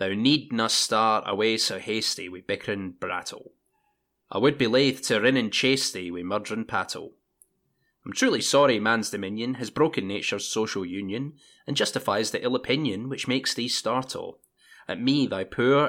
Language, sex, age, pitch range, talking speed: English, male, 20-39, 105-135 Hz, 165 wpm